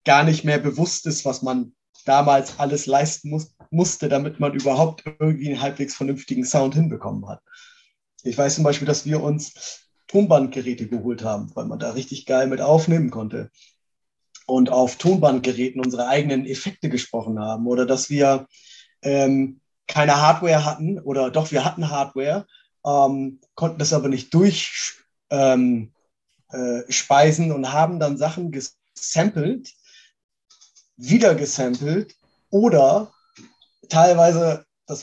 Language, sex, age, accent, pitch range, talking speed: German, male, 30-49, German, 135-165 Hz, 130 wpm